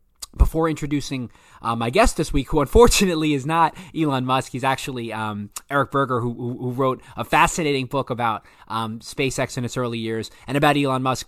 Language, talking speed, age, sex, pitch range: English, 190 wpm, 20-39, male, 115-140 Hz